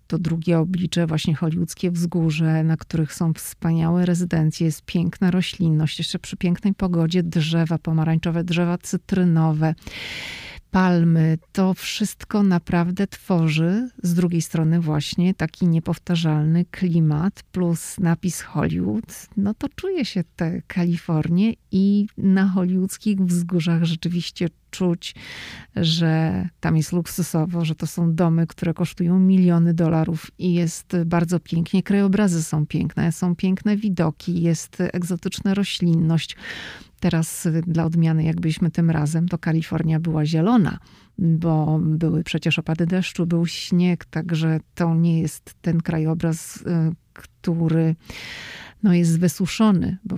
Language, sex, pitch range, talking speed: Polish, female, 160-180 Hz, 120 wpm